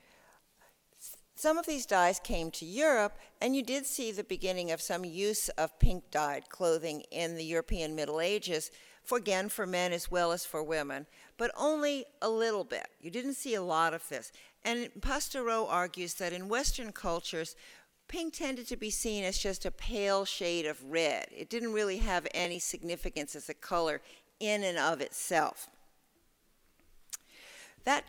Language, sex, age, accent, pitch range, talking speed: English, female, 60-79, American, 165-225 Hz, 170 wpm